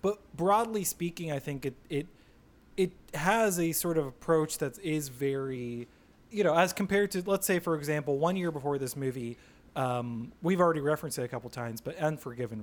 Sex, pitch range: male, 135-175 Hz